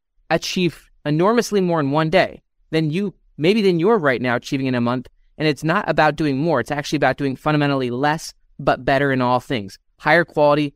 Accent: American